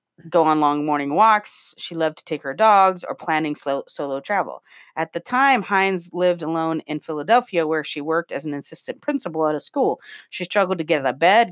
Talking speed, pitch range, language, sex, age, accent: 215 wpm, 155-205 Hz, English, female, 40-59, American